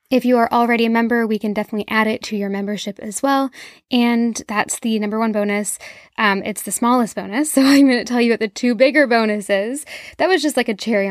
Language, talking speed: English, 240 wpm